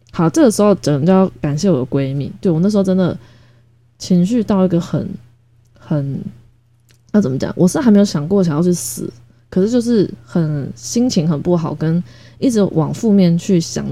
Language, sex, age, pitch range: Chinese, female, 20-39, 145-190 Hz